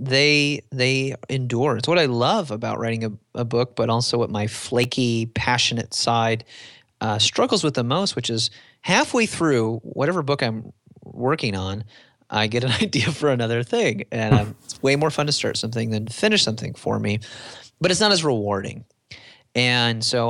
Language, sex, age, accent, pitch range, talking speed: English, male, 30-49, American, 110-130 Hz, 180 wpm